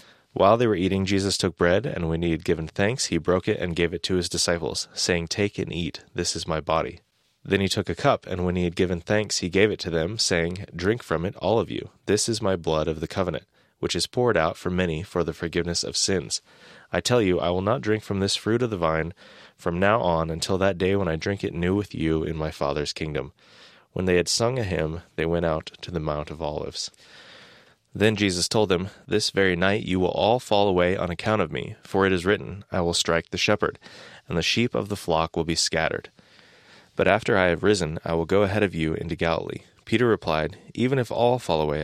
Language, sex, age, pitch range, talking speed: English, male, 30-49, 85-100 Hz, 240 wpm